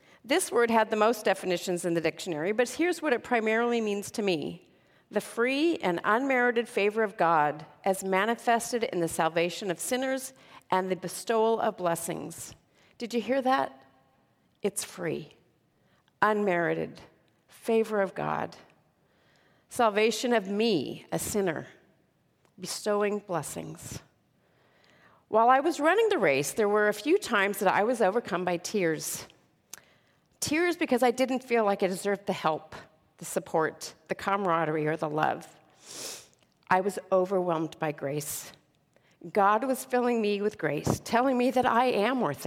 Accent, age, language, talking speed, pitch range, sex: American, 40-59, English, 145 wpm, 180-235 Hz, female